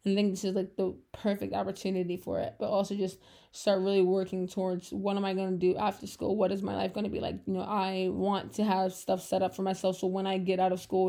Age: 20-39